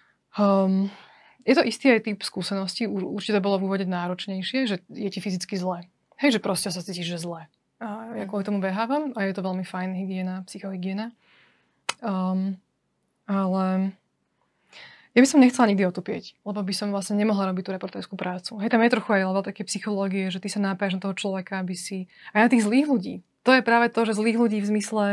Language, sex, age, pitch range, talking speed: Slovak, female, 20-39, 190-220 Hz, 205 wpm